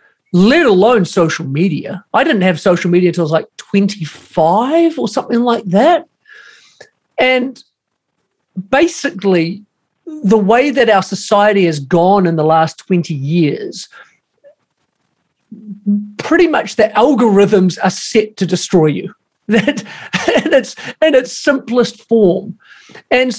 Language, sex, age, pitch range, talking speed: English, male, 40-59, 185-255 Hz, 125 wpm